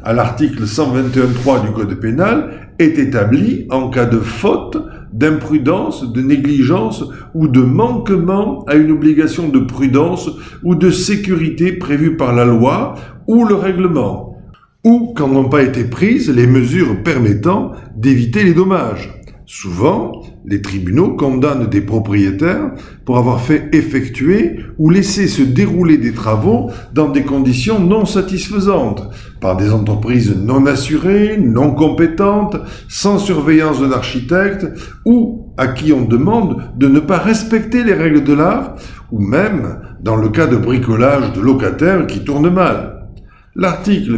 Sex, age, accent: male, 50-69, French